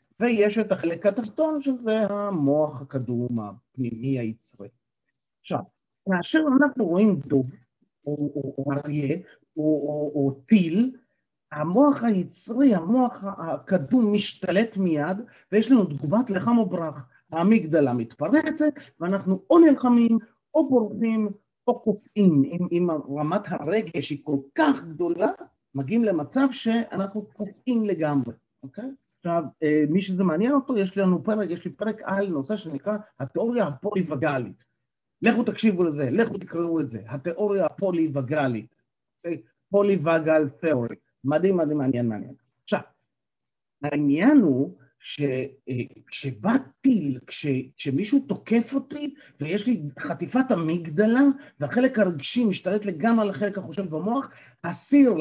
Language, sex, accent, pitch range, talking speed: Hebrew, male, native, 145-225 Hz, 115 wpm